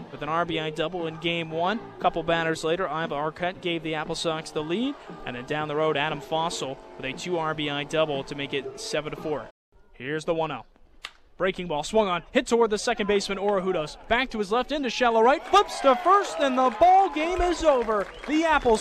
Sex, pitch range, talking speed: male, 155-205 Hz, 210 wpm